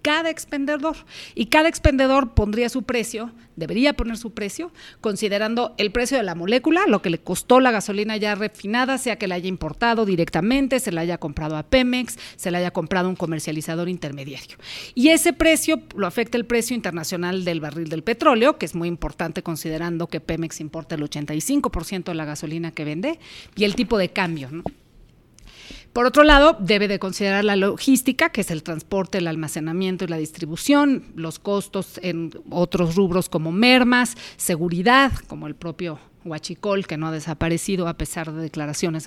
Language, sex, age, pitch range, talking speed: Spanish, female, 40-59, 170-240 Hz, 175 wpm